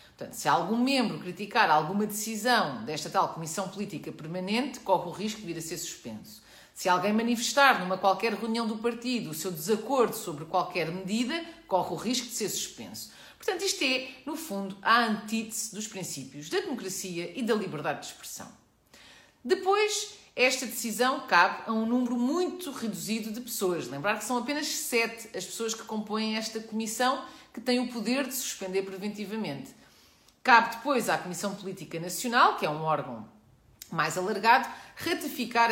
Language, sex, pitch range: Portuguese, female, 190-250 Hz